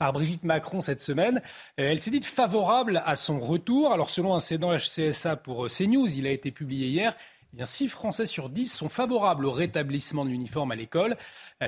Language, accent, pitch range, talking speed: French, French, 170-225 Hz, 185 wpm